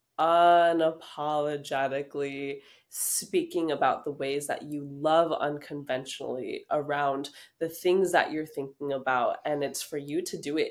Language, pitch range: English, 145-185 Hz